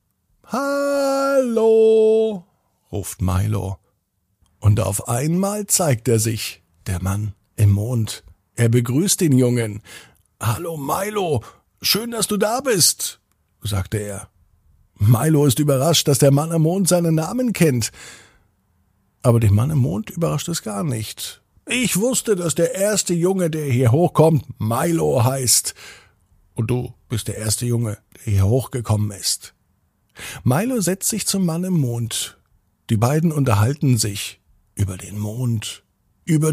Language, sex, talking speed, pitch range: German, male, 135 wpm, 105-175 Hz